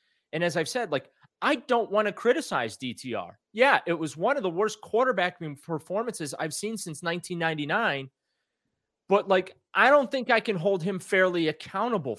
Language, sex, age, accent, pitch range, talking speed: English, male, 30-49, American, 165-235 Hz, 170 wpm